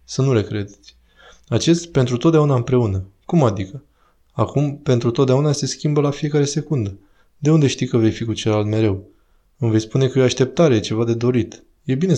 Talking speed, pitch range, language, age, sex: 190 wpm, 110-145 Hz, Romanian, 20-39, male